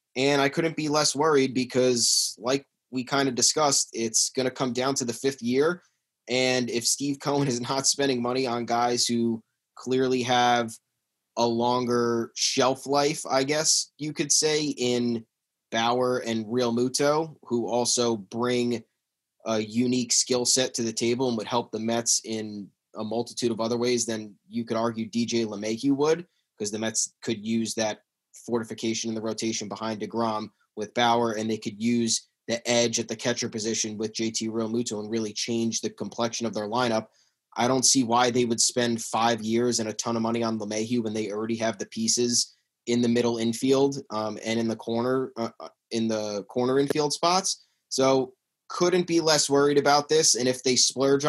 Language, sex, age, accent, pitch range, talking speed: English, male, 20-39, American, 115-130 Hz, 185 wpm